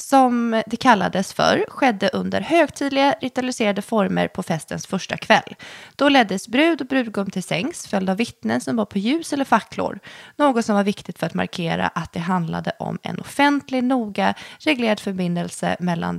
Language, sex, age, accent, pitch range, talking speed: Swedish, female, 20-39, native, 180-245 Hz, 170 wpm